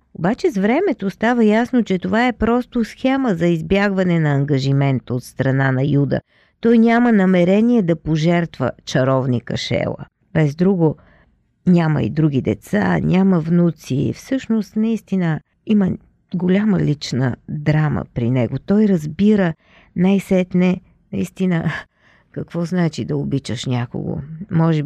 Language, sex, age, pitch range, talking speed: Bulgarian, female, 40-59, 140-195 Hz, 125 wpm